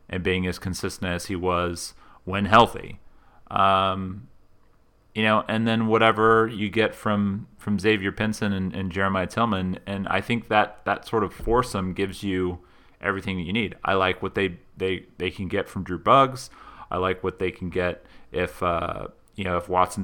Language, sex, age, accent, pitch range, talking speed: English, male, 30-49, American, 90-110 Hz, 185 wpm